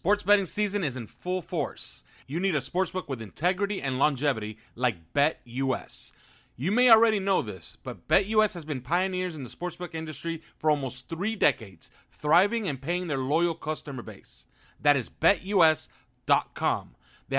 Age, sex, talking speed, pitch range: 40-59, male, 160 wpm, 135-180 Hz